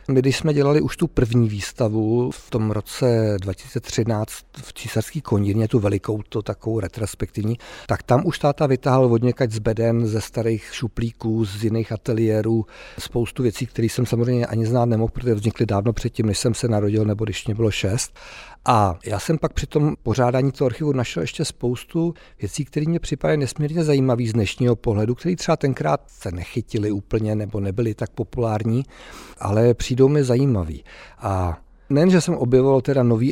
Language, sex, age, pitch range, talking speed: Czech, male, 50-69, 110-130 Hz, 180 wpm